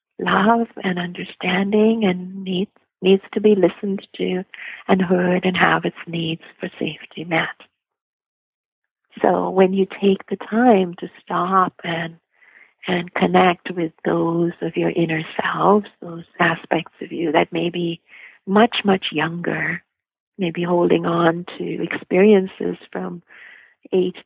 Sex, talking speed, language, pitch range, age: female, 130 wpm, English, 165-200 Hz, 50-69